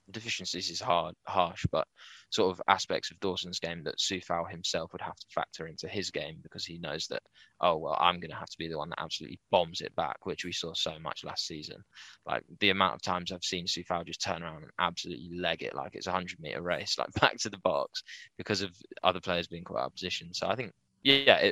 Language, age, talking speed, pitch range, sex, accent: English, 20-39, 235 wpm, 90-100 Hz, male, British